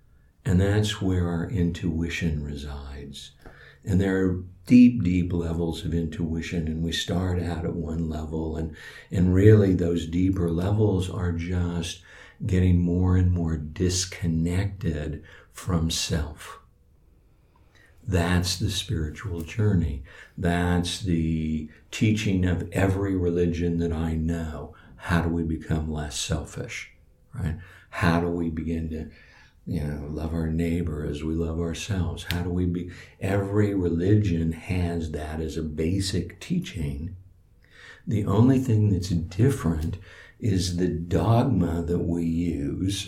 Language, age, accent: English, 60-79, American